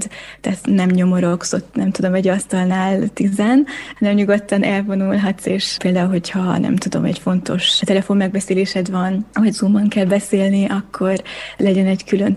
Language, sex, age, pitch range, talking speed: Hungarian, female, 20-39, 190-215 Hz, 145 wpm